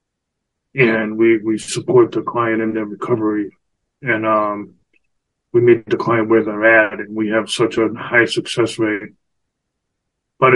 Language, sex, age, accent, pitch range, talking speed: English, male, 20-39, American, 110-130 Hz, 155 wpm